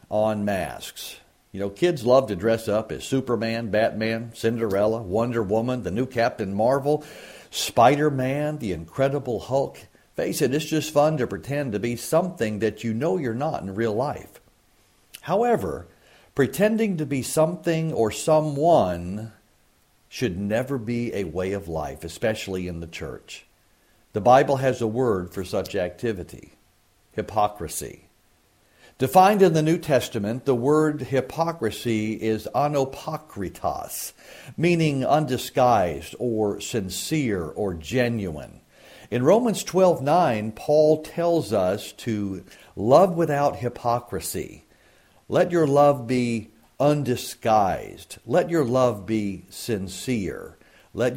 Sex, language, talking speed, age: male, English, 125 wpm, 50-69